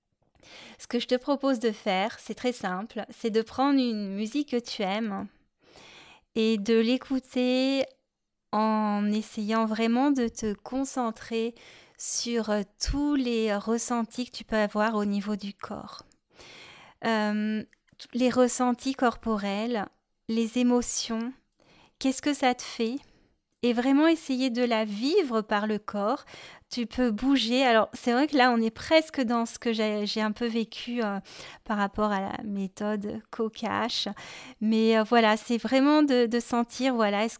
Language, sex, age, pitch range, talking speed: French, female, 30-49, 215-250 Hz, 150 wpm